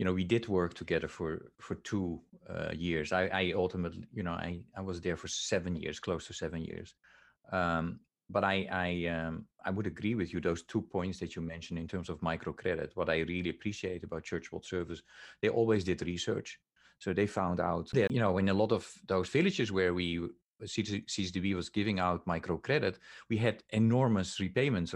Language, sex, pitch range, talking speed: English, male, 85-100 Hz, 200 wpm